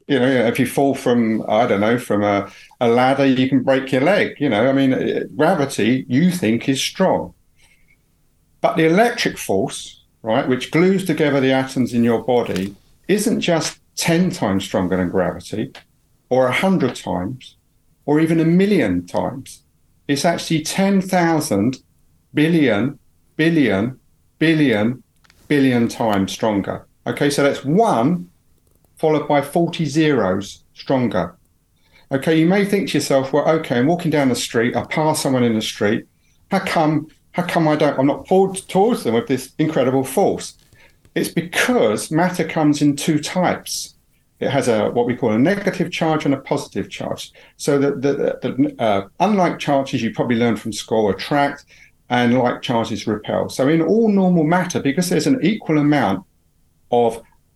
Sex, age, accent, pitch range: male, 50-69, British, 110-160 Hz